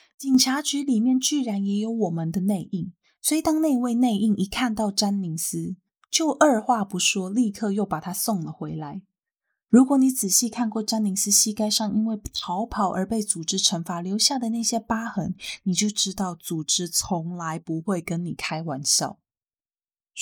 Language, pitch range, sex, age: Chinese, 185-245 Hz, female, 20-39